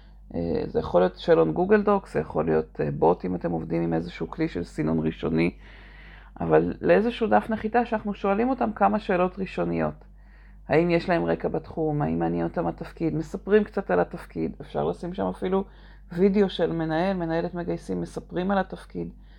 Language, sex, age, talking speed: Hebrew, female, 40-59, 165 wpm